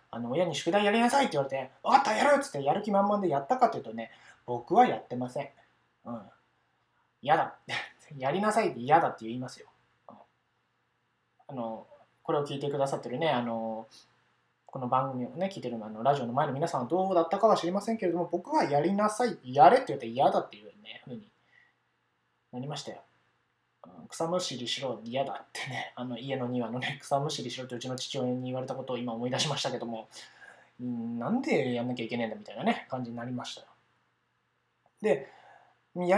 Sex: male